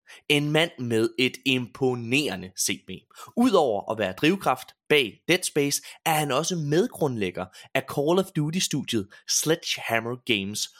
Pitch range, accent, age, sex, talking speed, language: 115-165 Hz, native, 30-49, male, 135 wpm, Danish